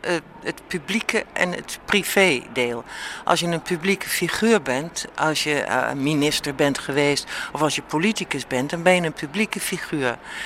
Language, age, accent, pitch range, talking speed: Dutch, 60-79, Dutch, 145-200 Hz, 160 wpm